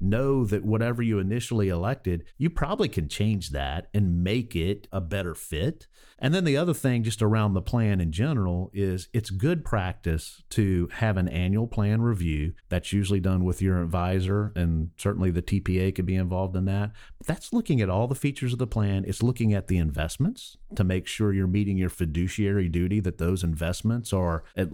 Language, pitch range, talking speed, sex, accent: English, 90-115 Hz, 195 wpm, male, American